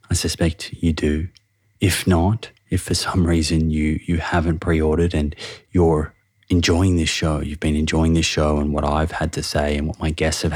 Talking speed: 200 wpm